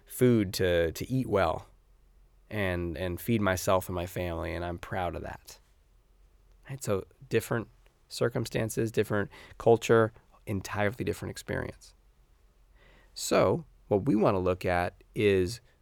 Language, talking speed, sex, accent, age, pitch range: English, 130 wpm, male, American, 30-49, 90-115 Hz